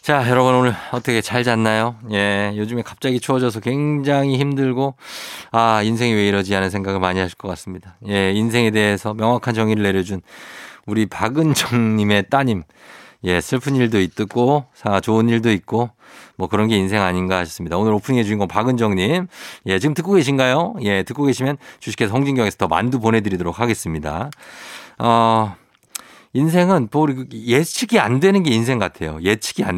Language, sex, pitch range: Korean, male, 100-135 Hz